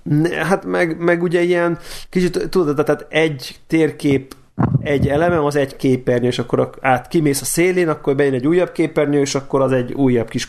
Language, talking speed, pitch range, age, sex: Hungarian, 185 wpm, 125-150 Hz, 30-49, male